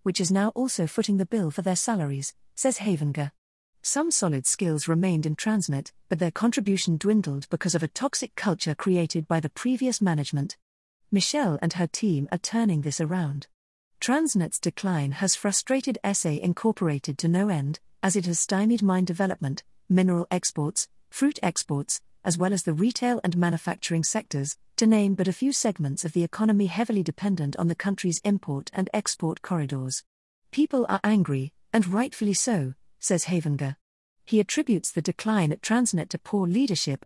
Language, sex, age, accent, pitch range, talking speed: English, female, 40-59, British, 160-210 Hz, 165 wpm